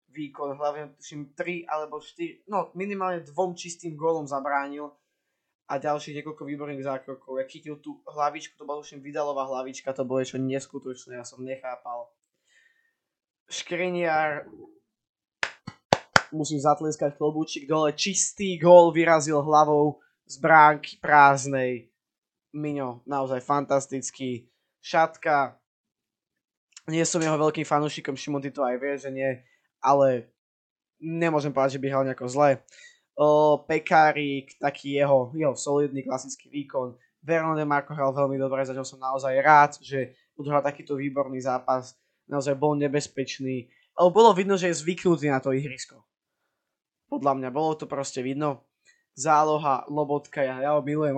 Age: 20-39